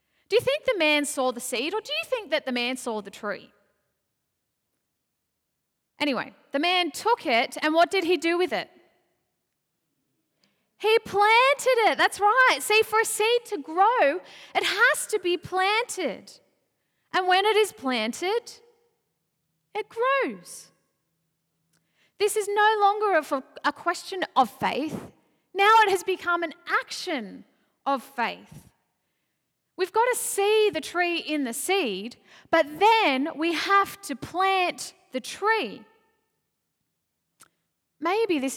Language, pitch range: English, 255-395 Hz